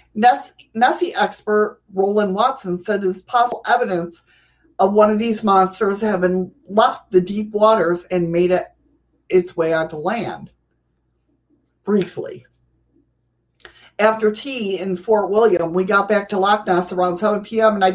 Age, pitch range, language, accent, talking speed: 50-69, 180-220 Hz, English, American, 145 wpm